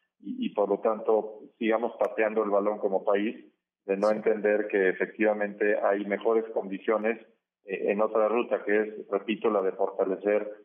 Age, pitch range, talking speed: 30-49, 105-115 Hz, 165 wpm